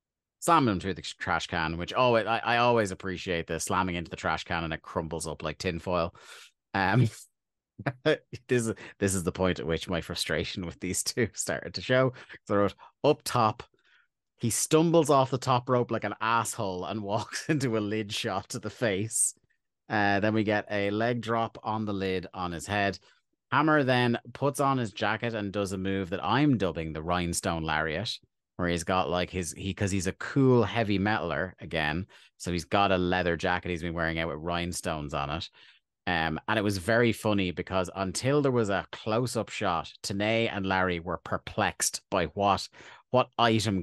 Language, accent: English, British